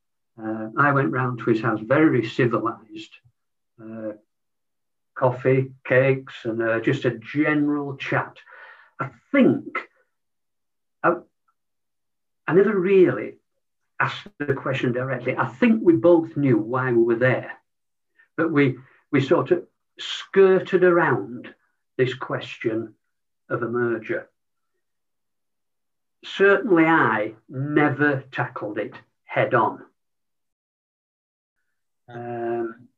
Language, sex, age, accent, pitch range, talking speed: English, male, 60-79, British, 120-170 Hz, 100 wpm